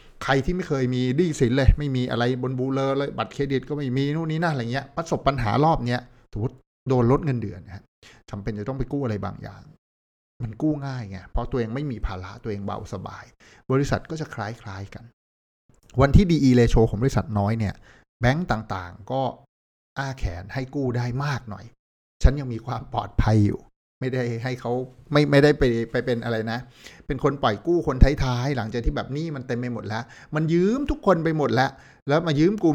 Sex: male